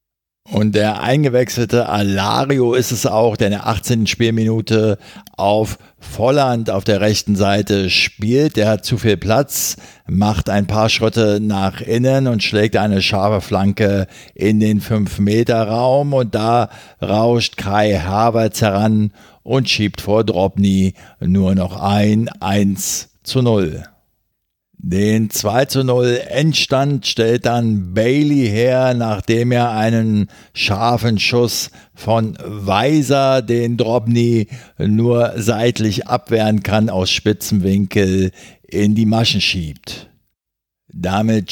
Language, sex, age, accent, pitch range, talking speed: German, male, 50-69, German, 100-120 Hz, 120 wpm